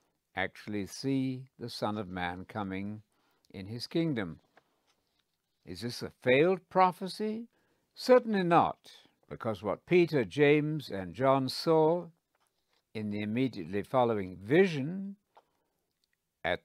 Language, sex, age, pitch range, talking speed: English, male, 60-79, 105-165 Hz, 110 wpm